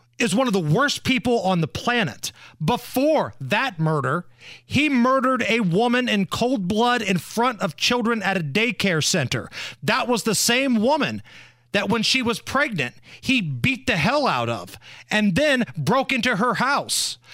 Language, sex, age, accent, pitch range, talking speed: English, male, 40-59, American, 170-245 Hz, 170 wpm